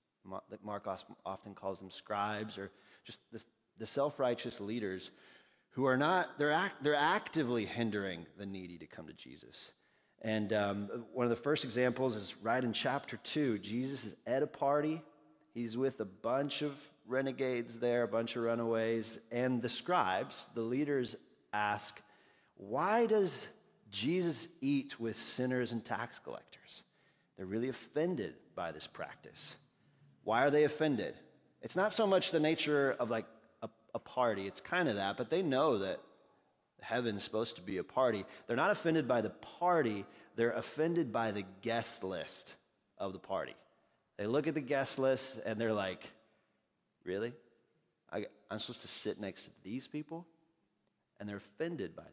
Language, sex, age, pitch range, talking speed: English, male, 30-49, 105-140 Hz, 160 wpm